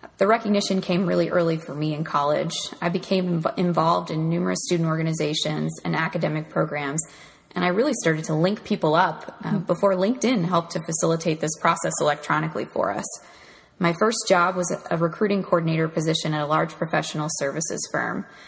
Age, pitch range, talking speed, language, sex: 20-39, 160-190 Hz, 170 wpm, English, female